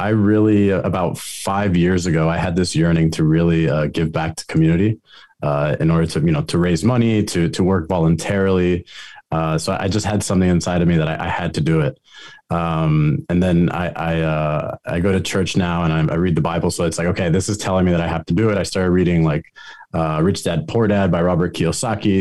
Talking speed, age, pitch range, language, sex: 240 wpm, 20-39, 85-100 Hz, English, male